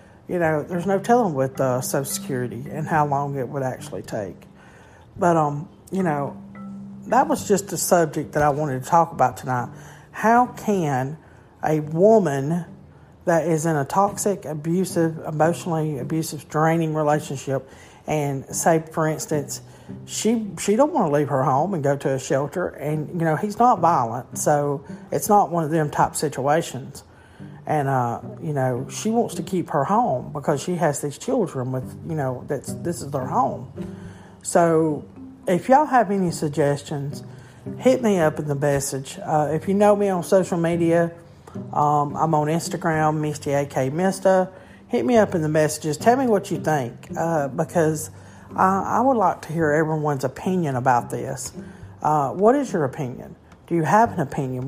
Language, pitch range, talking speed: English, 140-180 Hz, 175 wpm